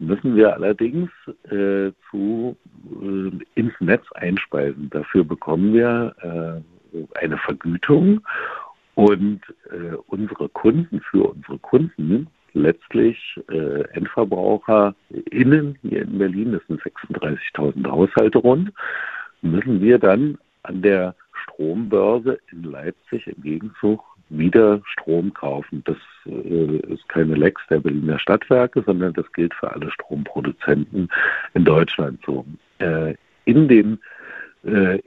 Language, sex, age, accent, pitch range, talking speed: German, male, 60-79, German, 85-115 Hz, 115 wpm